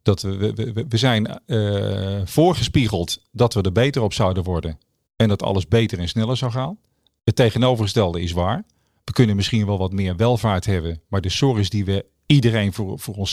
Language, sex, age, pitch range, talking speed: Dutch, male, 40-59, 100-125 Hz, 195 wpm